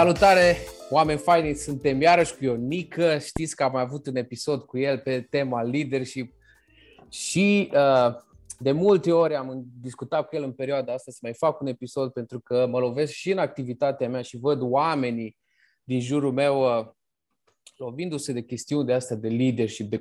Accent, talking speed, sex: native, 175 wpm, male